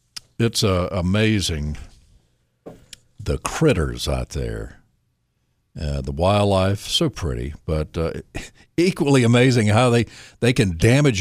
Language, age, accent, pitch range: English, 60-79, American, 90-120 Hz